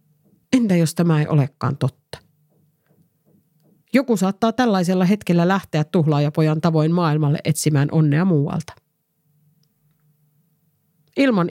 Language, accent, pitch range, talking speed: Finnish, native, 150-185 Hz, 95 wpm